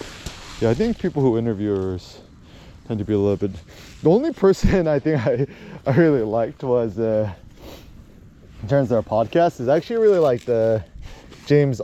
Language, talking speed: English, 170 wpm